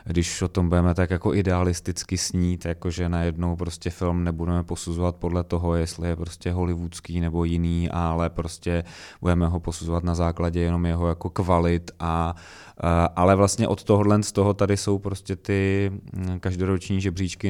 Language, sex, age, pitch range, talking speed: Czech, male, 20-39, 85-95 Hz, 135 wpm